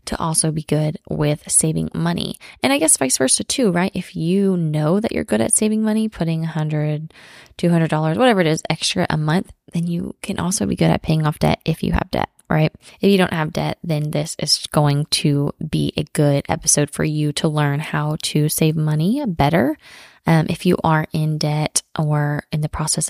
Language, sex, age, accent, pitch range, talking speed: English, female, 20-39, American, 150-180 Hz, 210 wpm